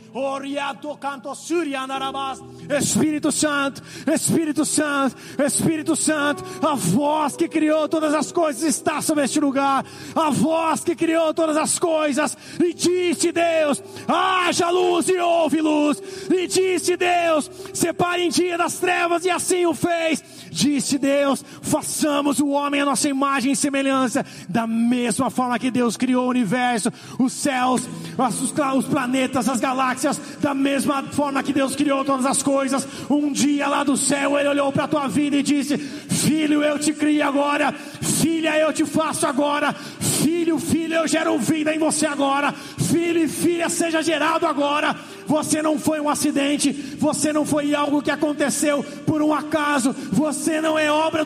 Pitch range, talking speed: 275-315 Hz, 155 wpm